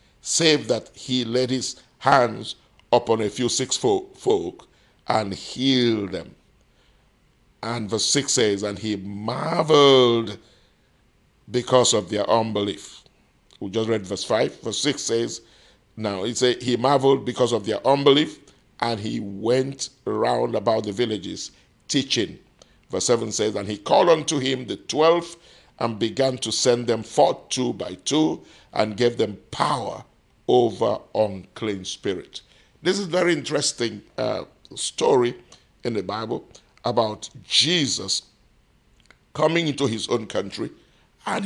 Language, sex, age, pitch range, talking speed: English, male, 50-69, 110-140 Hz, 135 wpm